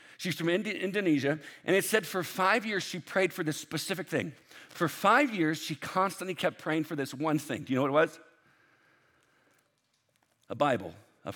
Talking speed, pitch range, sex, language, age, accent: 190 wpm, 125-180 Hz, male, English, 50-69, American